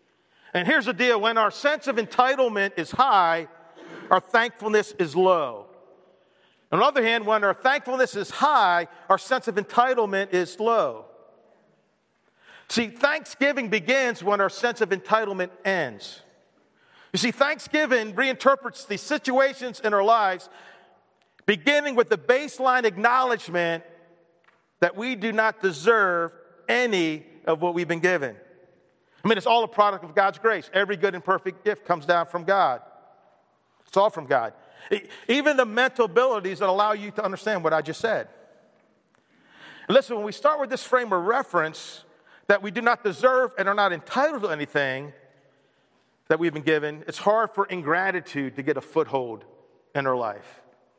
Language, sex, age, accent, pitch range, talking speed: English, male, 50-69, American, 170-240 Hz, 160 wpm